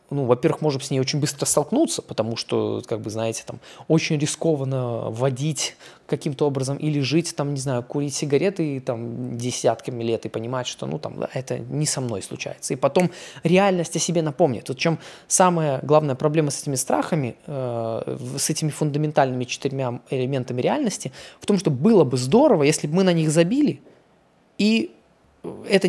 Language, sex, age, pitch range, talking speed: Russian, male, 20-39, 135-175 Hz, 170 wpm